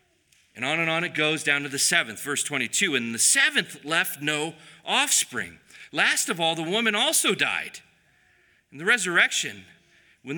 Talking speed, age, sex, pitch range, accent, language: 170 wpm, 40-59, male, 115-175 Hz, American, English